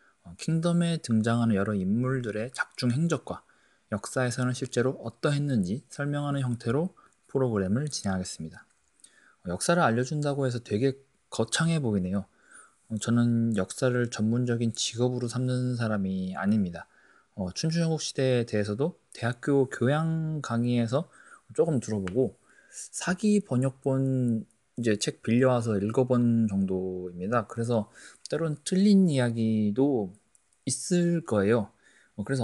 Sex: male